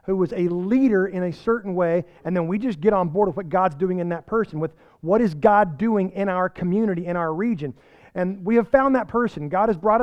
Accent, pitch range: American, 185-220 Hz